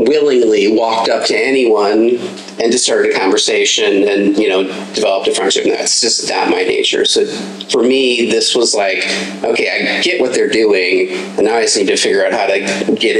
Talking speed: 205 wpm